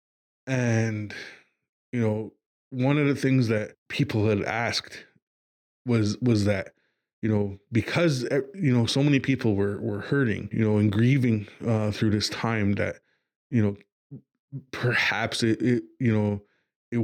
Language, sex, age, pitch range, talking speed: English, male, 20-39, 105-120 Hz, 150 wpm